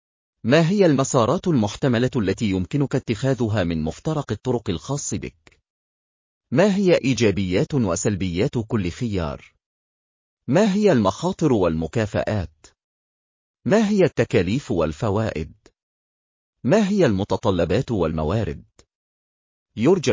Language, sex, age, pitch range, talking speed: Arabic, male, 40-59, 90-145 Hz, 90 wpm